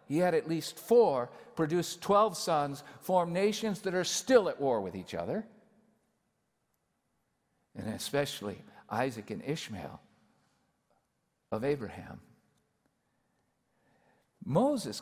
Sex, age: male, 50-69